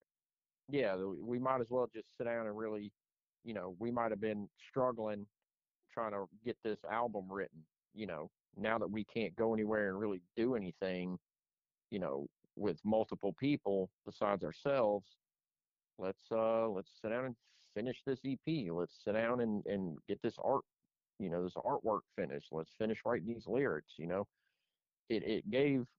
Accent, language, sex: American, English, male